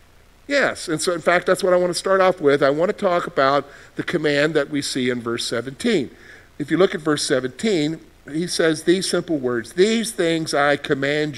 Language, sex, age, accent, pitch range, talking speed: English, male, 50-69, American, 135-195 Hz, 215 wpm